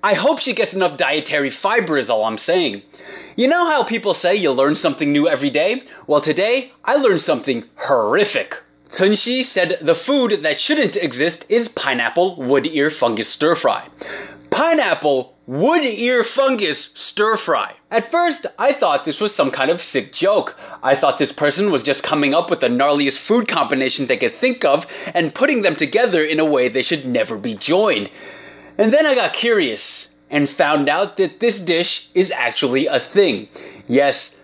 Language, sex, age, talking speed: English, male, 20-39, 185 wpm